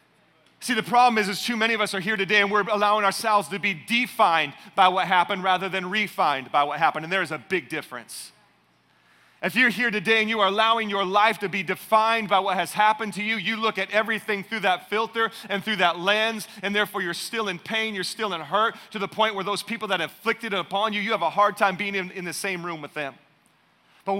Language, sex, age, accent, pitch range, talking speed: English, male, 40-59, American, 140-210 Hz, 245 wpm